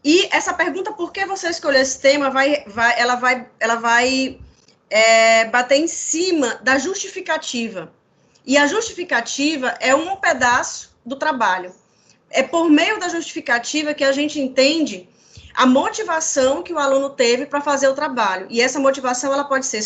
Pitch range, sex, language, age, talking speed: 245-305 Hz, female, Portuguese, 20-39, 150 wpm